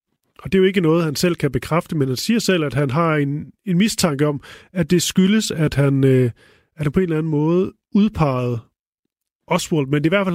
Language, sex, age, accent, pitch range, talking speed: Danish, male, 30-49, native, 140-175 Hz, 230 wpm